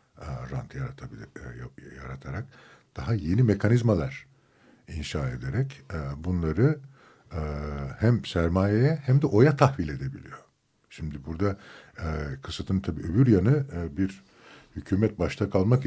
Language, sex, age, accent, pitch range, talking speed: Turkish, male, 60-79, native, 80-120 Hz, 95 wpm